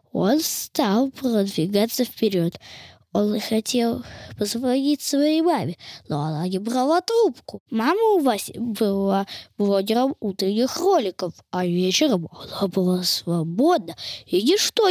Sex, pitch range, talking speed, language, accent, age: female, 205-310 Hz, 115 wpm, Russian, native, 20-39